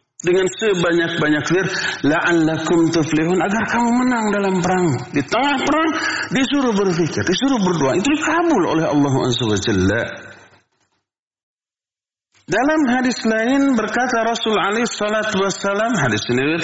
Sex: male